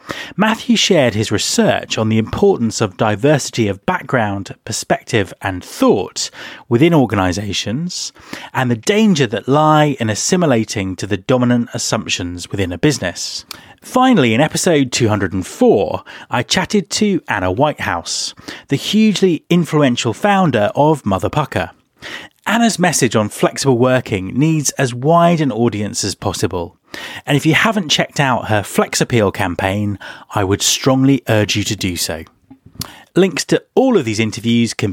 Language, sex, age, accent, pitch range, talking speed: English, male, 30-49, British, 105-165 Hz, 145 wpm